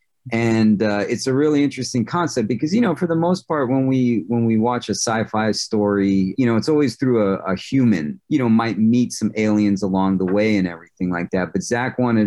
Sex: male